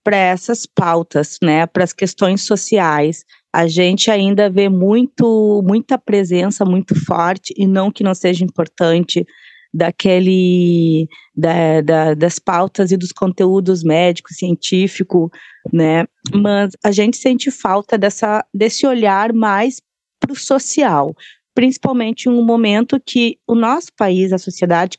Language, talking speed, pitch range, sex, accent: Portuguese, 120 wpm, 185-245 Hz, female, Brazilian